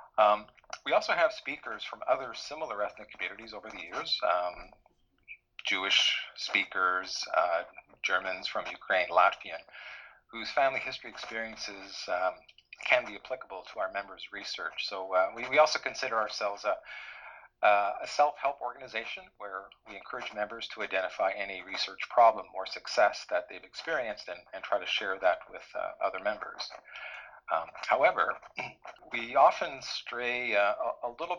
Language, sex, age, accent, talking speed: English, male, 40-59, American, 150 wpm